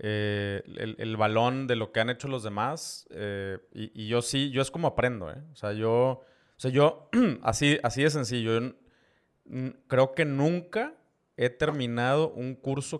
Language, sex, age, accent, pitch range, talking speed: Spanish, male, 30-49, Mexican, 115-155 Hz, 185 wpm